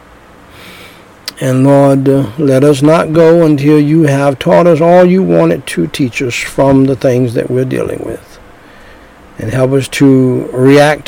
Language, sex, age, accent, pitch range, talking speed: English, male, 60-79, American, 115-140 Hz, 155 wpm